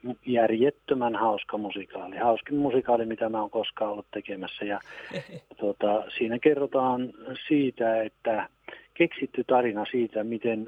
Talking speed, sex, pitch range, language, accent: 120 wpm, male, 105-130 Hz, Finnish, native